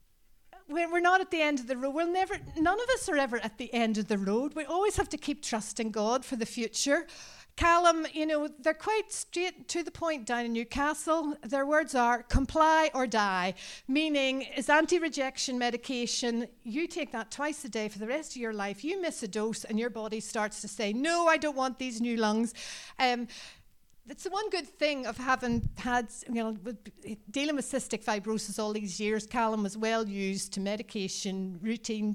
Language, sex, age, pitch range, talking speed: English, female, 50-69, 220-285 Hz, 200 wpm